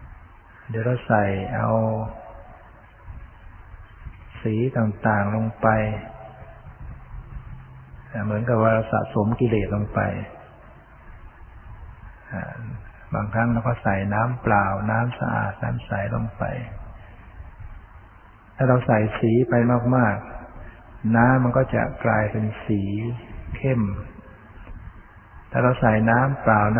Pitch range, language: 100-120 Hz, Thai